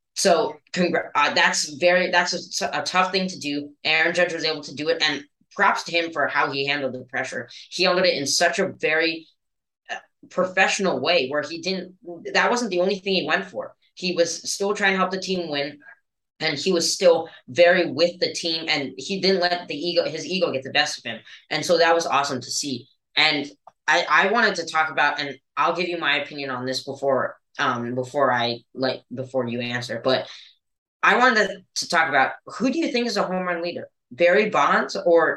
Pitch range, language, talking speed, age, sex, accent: 140-180 Hz, English, 215 wpm, 10-29, female, American